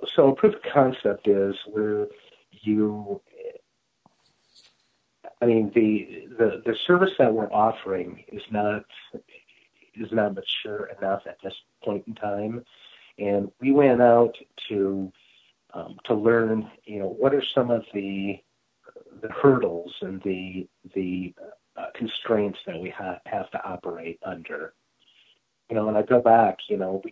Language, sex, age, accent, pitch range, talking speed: English, male, 50-69, American, 100-120 Hz, 145 wpm